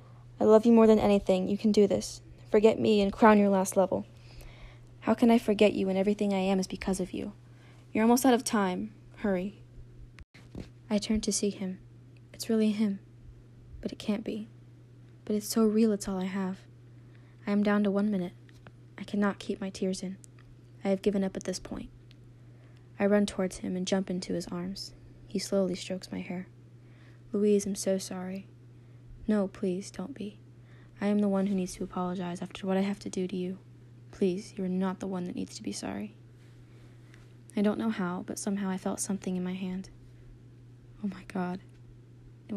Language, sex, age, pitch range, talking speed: English, female, 10-29, 120-195 Hz, 195 wpm